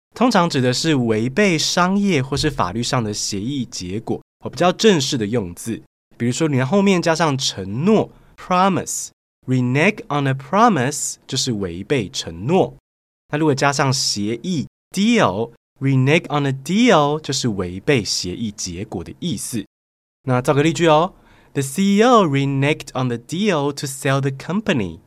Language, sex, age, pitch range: Chinese, male, 20-39, 120-185 Hz